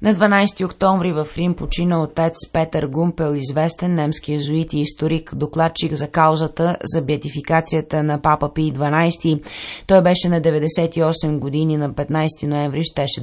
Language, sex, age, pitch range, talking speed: Bulgarian, female, 30-49, 150-170 Hz, 145 wpm